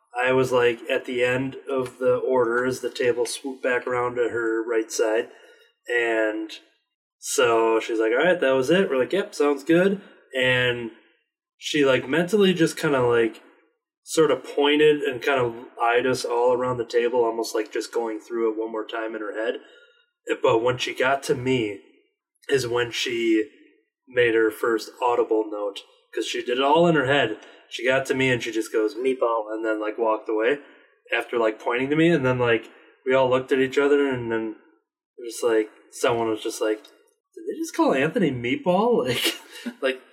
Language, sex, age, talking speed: English, male, 20-39, 195 wpm